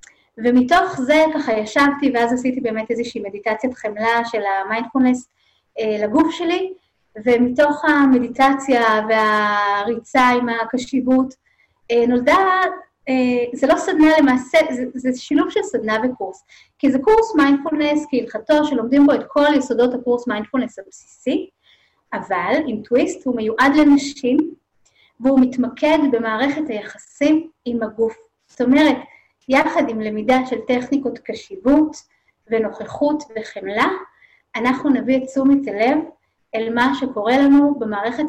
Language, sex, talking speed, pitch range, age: Hebrew, female, 120 wpm, 230-285 Hz, 30-49